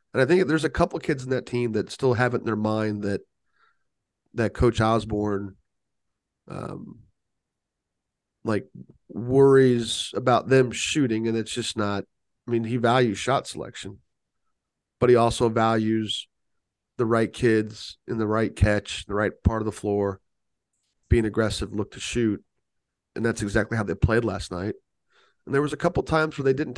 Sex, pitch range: male, 105-125 Hz